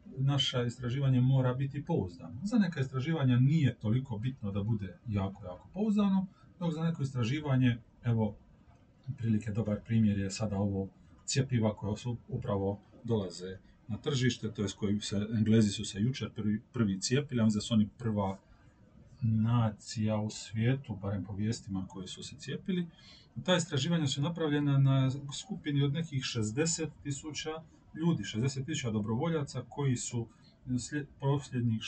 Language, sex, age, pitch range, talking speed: Croatian, male, 40-59, 110-140 Hz, 140 wpm